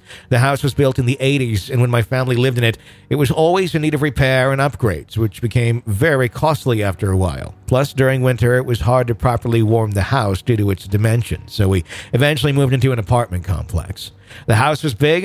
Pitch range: 105-135 Hz